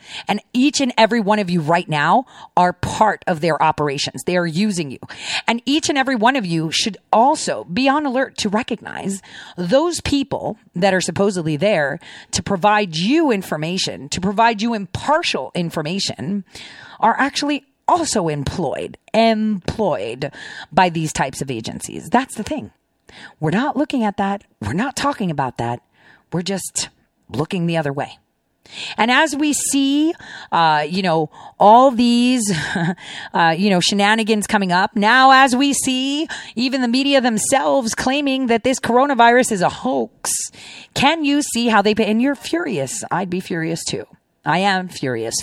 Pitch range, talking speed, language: 175-260 Hz, 160 wpm, English